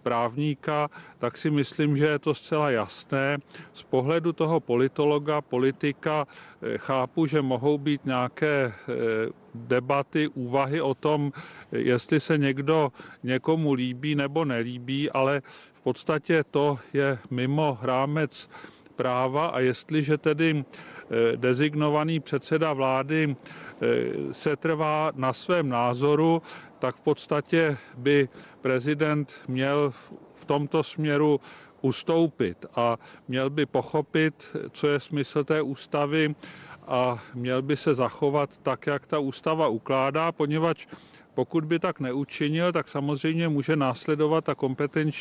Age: 40-59